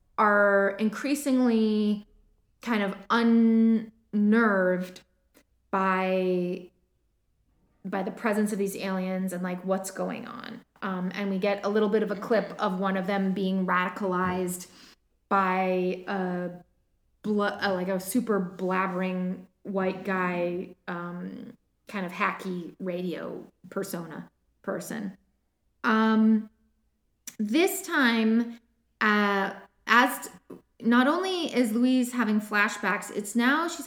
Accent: American